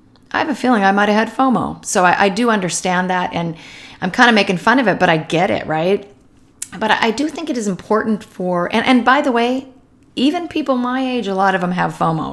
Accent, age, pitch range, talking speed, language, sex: American, 40-59, 170-230 Hz, 250 wpm, English, female